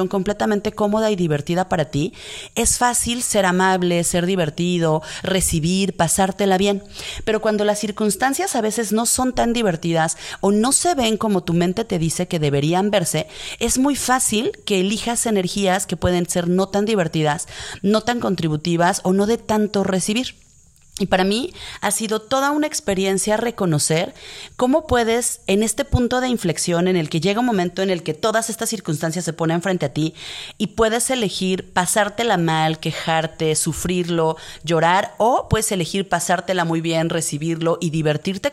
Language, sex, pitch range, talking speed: Spanish, female, 170-220 Hz, 165 wpm